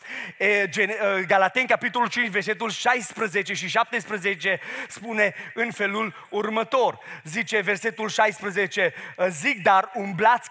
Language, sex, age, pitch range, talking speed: Romanian, male, 30-49, 210-250 Hz, 95 wpm